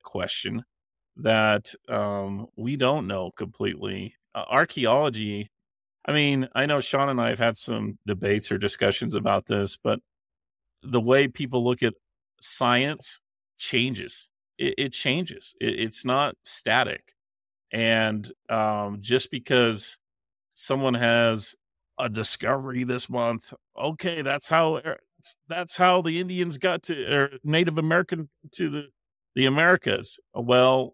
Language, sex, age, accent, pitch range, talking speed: English, male, 40-59, American, 105-155 Hz, 125 wpm